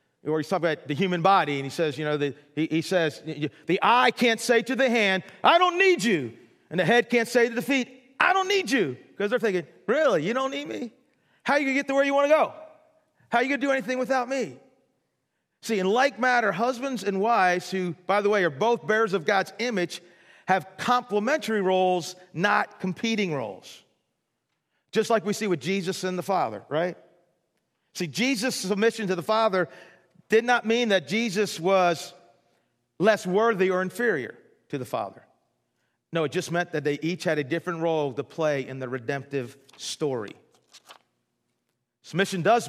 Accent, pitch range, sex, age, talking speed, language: American, 180-235 Hz, male, 40-59, 195 wpm, English